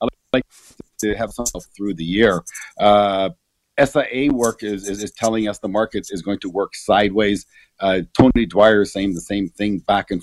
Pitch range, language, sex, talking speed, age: 100-130 Hz, English, male, 175 wpm, 50-69